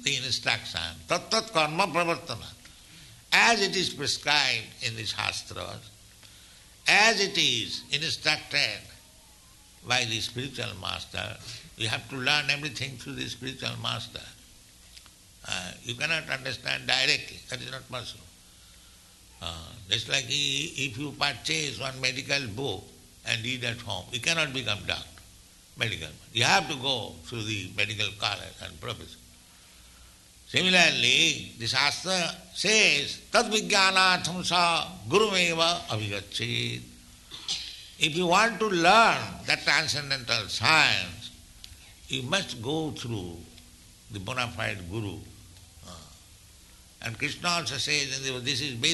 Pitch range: 100-150 Hz